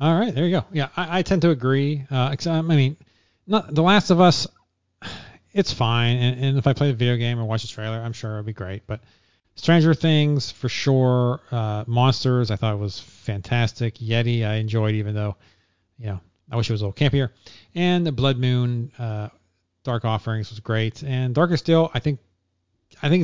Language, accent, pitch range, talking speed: English, American, 105-140 Hz, 205 wpm